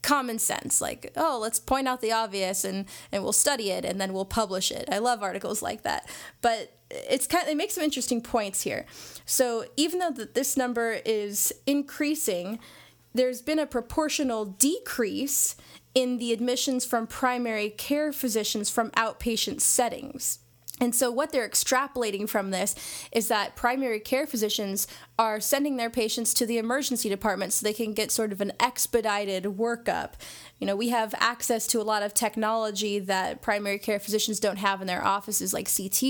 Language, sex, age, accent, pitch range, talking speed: English, female, 20-39, American, 205-250 Hz, 175 wpm